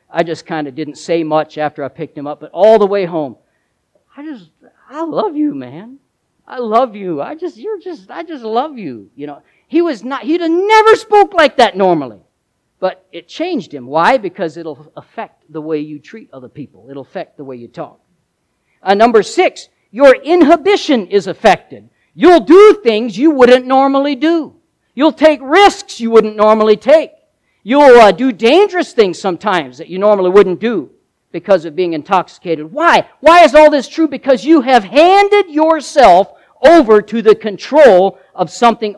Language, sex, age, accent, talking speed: English, male, 50-69, American, 185 wpm